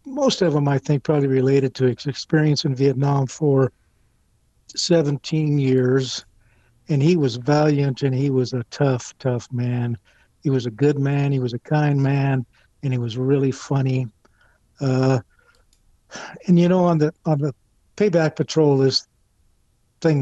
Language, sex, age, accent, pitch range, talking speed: English, male, 60-79, American, 130-150 Hz, 155 wpm